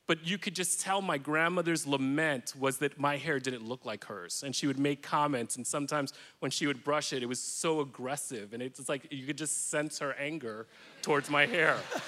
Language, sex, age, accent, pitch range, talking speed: English, male, 30-49, American, 135-155 Hz, 220 wpm